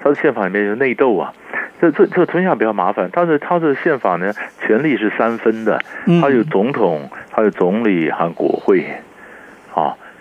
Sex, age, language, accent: male, 60-79, Chinese, native